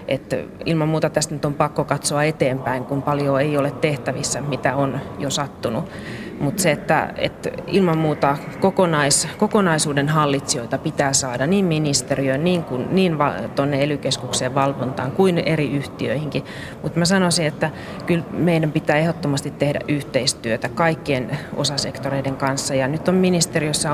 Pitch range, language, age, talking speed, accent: 135-160 Hz, Finnish, 30-49, 145 wpm, native